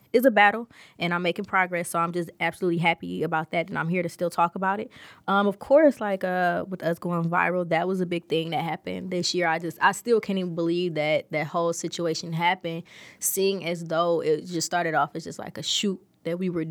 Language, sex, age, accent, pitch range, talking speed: English, female, 20-39, American, 170-195 Hz, 240 wpm